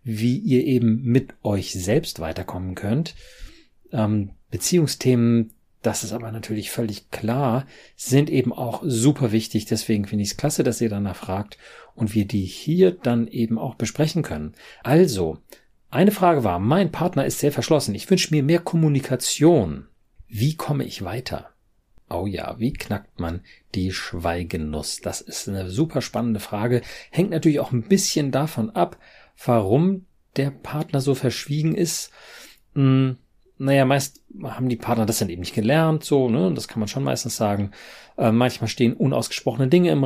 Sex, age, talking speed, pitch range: male, 40-59, 160 wpm, 110-145 Hz